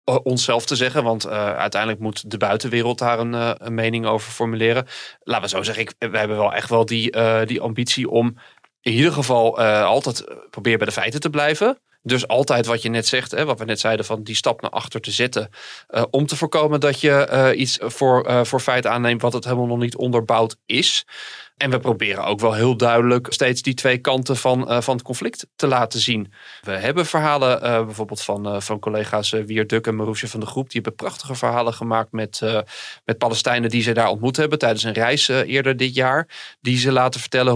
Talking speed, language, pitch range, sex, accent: 220 wpm, Dutch, 115-130 Hz, male, Dutch